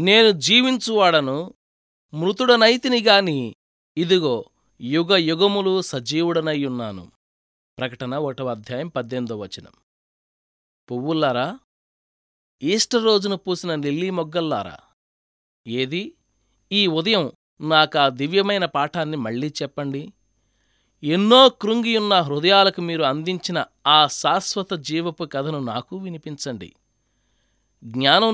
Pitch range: 125-195 Hz